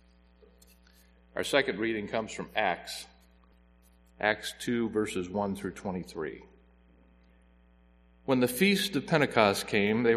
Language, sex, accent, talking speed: English, male, American, 110 wpm